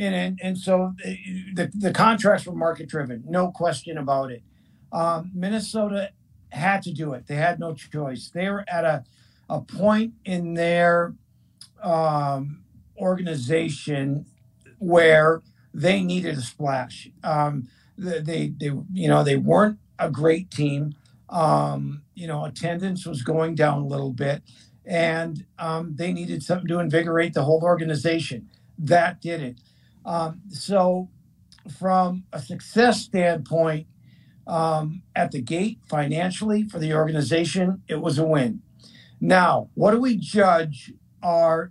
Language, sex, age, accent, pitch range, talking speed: English, male, 50-69, American, 150-185 Hz, 140 wpm